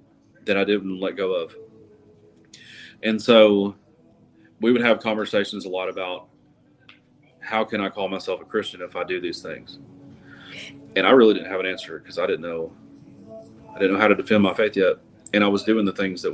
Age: 30-49